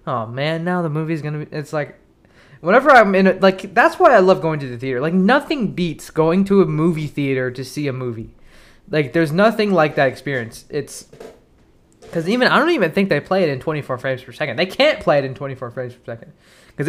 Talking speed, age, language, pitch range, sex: 235 wpm, 20-39, English, 130-170 Hz, male